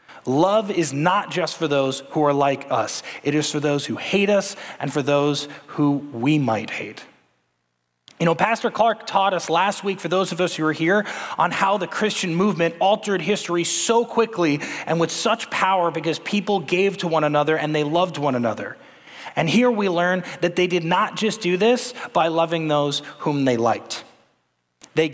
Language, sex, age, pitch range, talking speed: English, male, 30-49, 130-180 Hz, 195 wpm